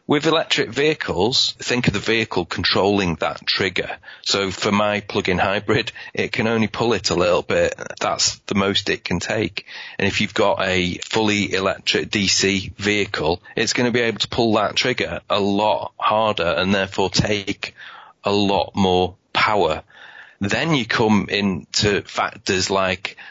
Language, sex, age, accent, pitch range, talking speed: English, male, 30-49, British, 95-115 Hz, 160 wpm